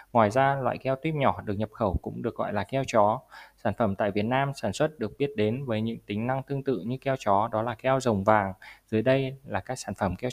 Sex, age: male, 20-39